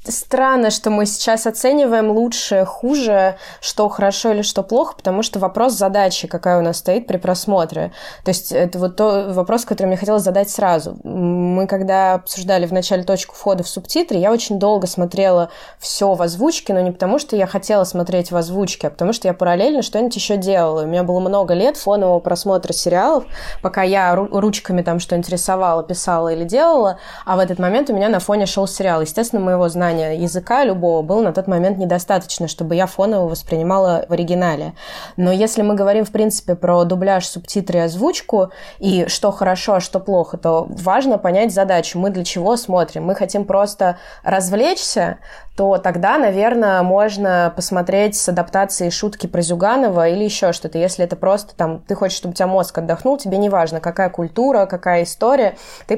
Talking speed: 180 wpm